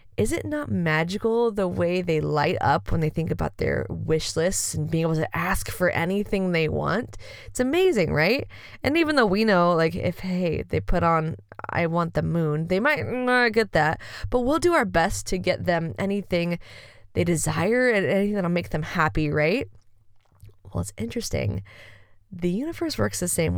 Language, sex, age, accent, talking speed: English, female, 20-39, American, 190 wpm